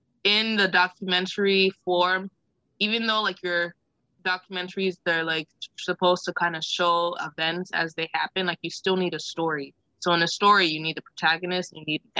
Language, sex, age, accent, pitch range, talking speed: English, female, 20-39, American, 160-180 Hz, 180 wpm